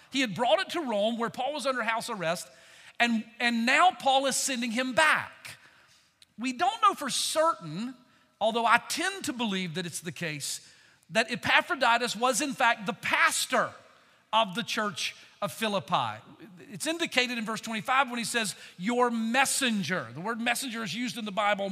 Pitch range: 180-245 Hz